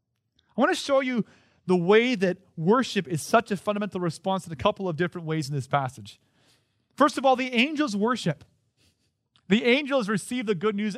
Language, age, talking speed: English, 30-49, 190 wpm